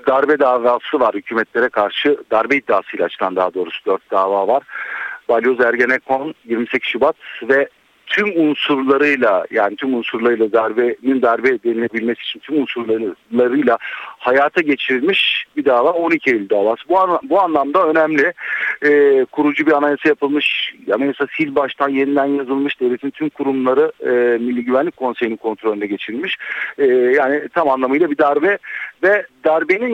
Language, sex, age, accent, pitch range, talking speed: Turkish, male, 50-69, native, 115-155 Hz, 130 wpm